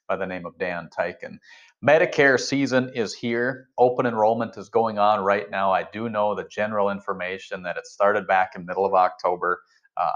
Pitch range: 100-120 Hz